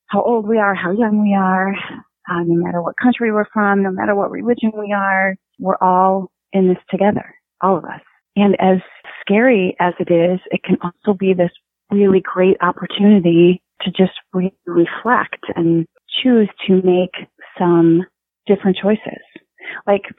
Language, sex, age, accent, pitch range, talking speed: English, female, 30-49, American, 170-195 Hz, 165 wpm